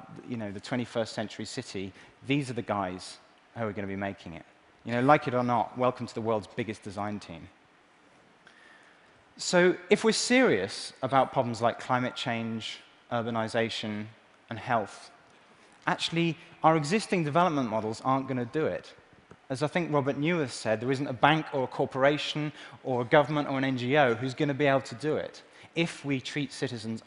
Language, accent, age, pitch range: Chinese, British, 20-39, 110-145 Hz